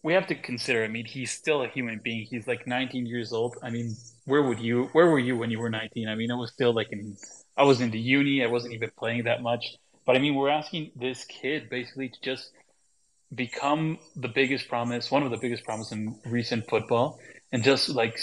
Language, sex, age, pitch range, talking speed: English, male, 20-39, 120-140 Hz, 235 wpm